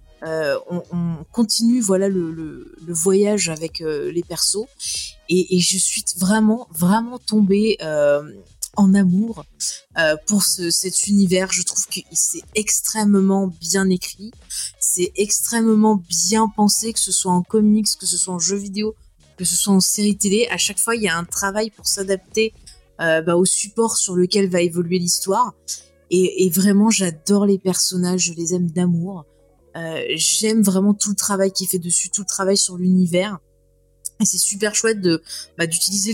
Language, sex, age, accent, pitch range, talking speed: French, female, 20-39, French, 170-210 Hz, 180 wpm